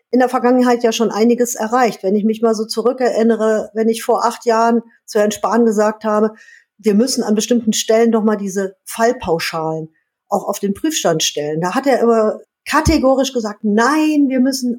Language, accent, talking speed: German, German, 190 wpm